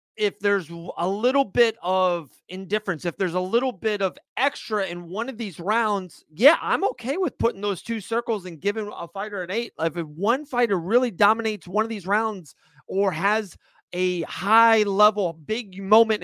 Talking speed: 180 wpm